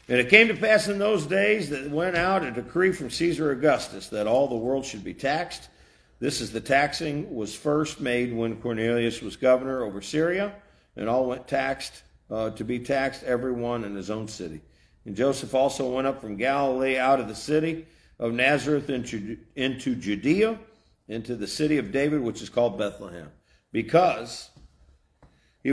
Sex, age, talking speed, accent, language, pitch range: male, 50-69, 175 wpm, American, English, 110-140 Hz